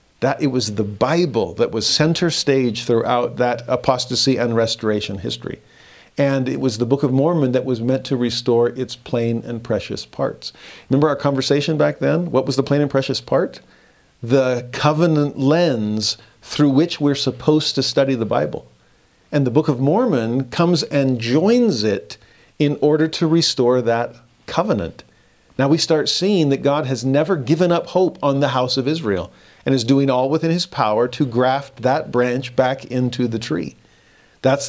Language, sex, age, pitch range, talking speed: English, male, 50-69, 120-150 Hz, 175 wpm